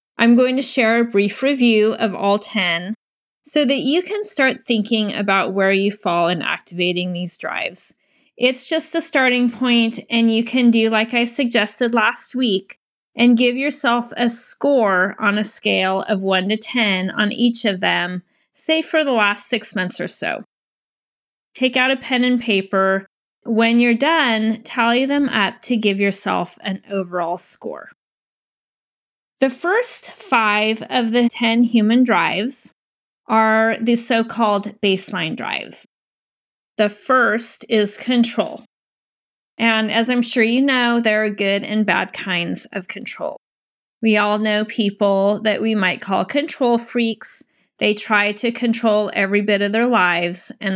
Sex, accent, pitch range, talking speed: female, American, 205-245 Hz, 155 wpm